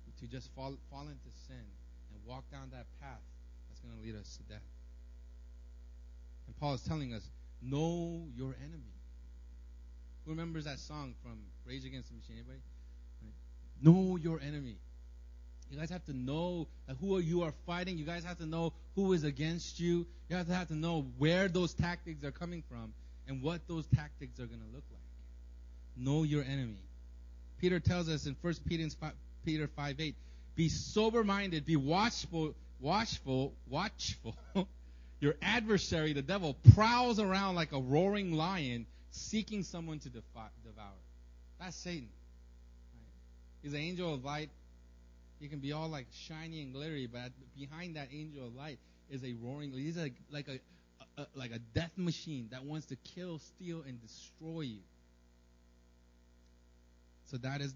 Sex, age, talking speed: male, 30-49, 165 wpm